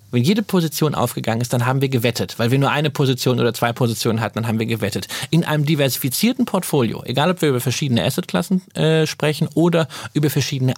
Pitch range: 120-155 Hz